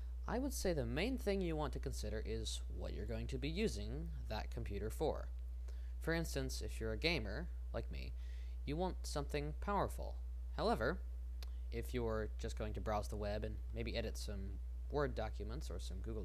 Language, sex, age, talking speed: English, male, 20-39, 185 wpm